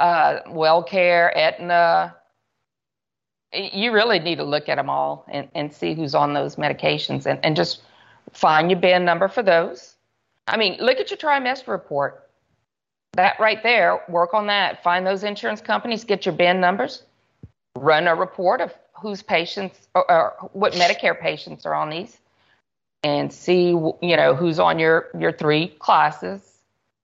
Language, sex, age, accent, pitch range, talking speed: English, female, 40-59, American, 150-210 Hz, 160 wpm